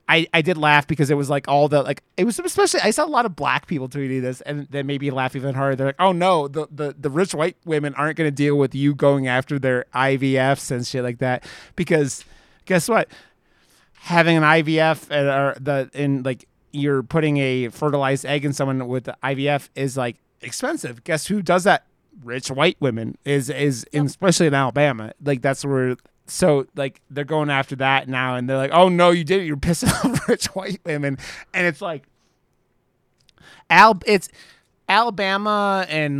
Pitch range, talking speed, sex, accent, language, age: 135-165 Hz, 200 wpm, male, American, English, 30-49